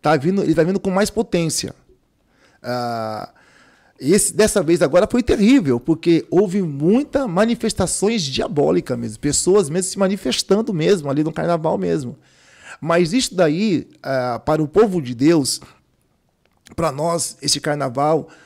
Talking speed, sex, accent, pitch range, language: 130 wpm, male, Brazilian, 145-195 Hz, Portuguese